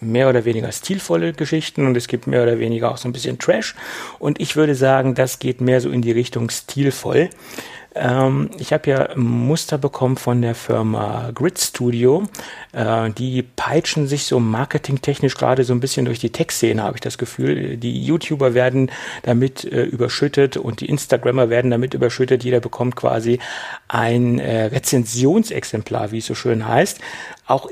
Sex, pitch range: male, 115-135 Hz